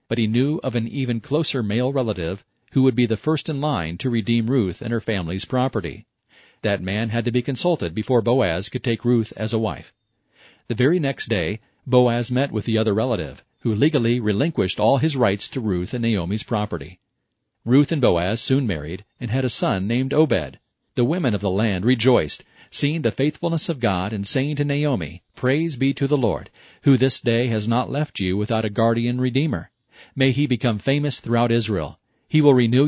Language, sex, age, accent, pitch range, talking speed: English, male, 40-59, American, 110-135 Hz, 200 wpm